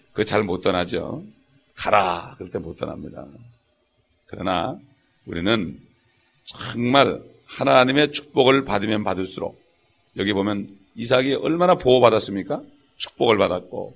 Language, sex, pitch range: English, male, 100-145 Hz